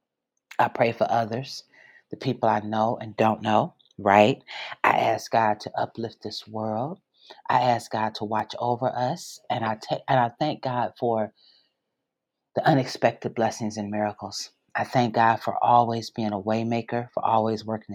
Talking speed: 170 wpm